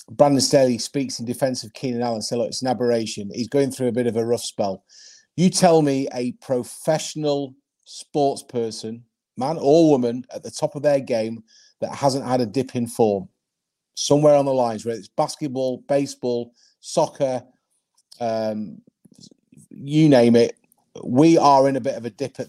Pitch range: 120-145 Hz